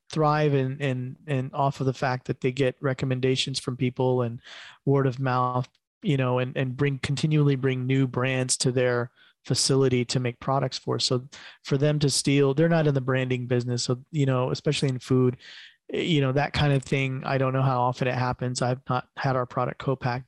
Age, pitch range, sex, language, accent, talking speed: 20-39, 125-140 Hz, male, English, American, 205 wpm